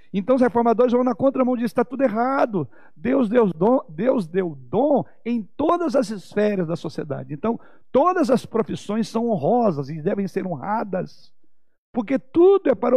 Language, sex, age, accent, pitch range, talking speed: Portuguese, male, 60-79, Brazilian, 180-250 Hz, 155 wpm